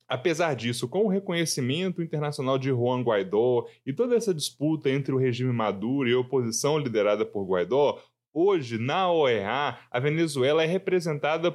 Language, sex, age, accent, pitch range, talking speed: Portuguese, male, 10-29, Brazilian, 145-205 Hz, 155 wpm